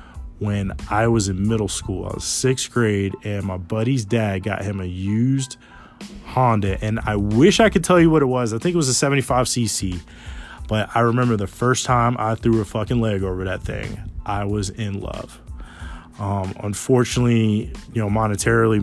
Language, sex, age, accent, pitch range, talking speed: English, male, 20-39, American, 100-120 Hz, 190 wpm